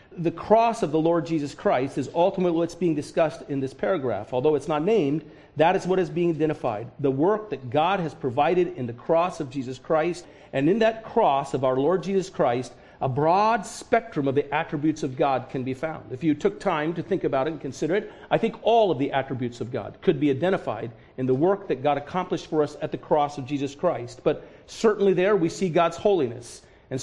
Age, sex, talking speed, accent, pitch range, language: 50-69, male, 225 wpm, American, 145-190 Hz, English